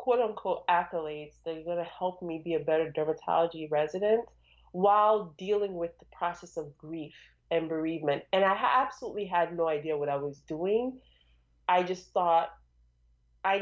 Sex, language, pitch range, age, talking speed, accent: female, English, 155-195 Hz, 20-39, 165 wpm, American